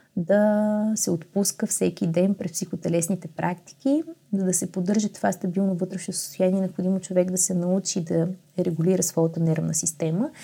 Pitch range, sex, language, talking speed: 175-215 Hz, female, Bulgarian, 150 wpm